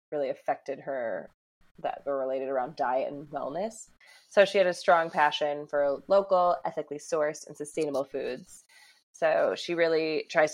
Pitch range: 145-165 Hz